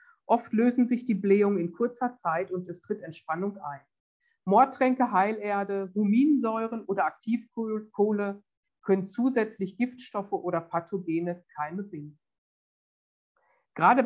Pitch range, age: 180-235 Hz, 50-69